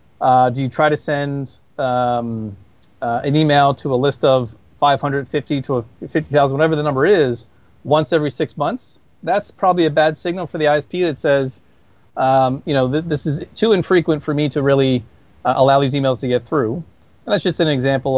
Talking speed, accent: 190 wpm, American